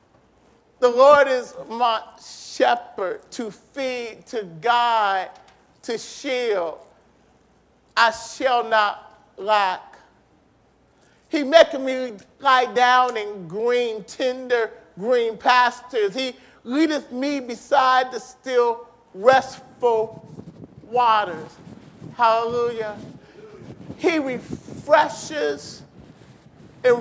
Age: 40-59